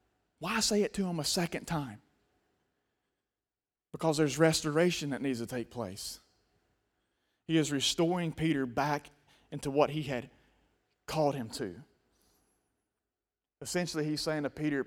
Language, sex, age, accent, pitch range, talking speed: English, male, 30-49, American, 145-190 Hz, 135 wpm